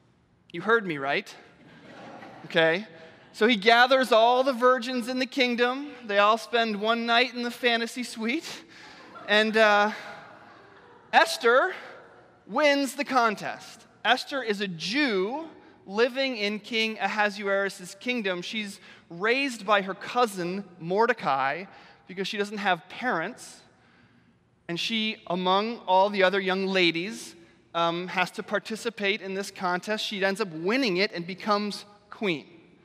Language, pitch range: English, 180-225 Hz